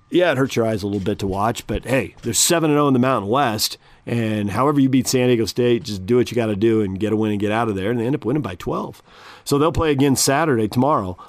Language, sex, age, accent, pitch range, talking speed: English, male, 40-59, American, 110-135 Hz, 285 wpm